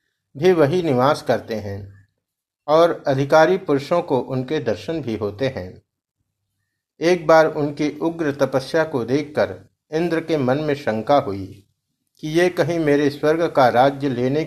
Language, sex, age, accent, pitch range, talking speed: Hindi, male, 50-69, native, 120-160 Hz, 145 wpm